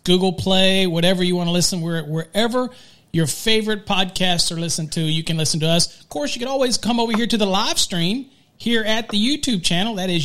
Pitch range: 170-210 Hz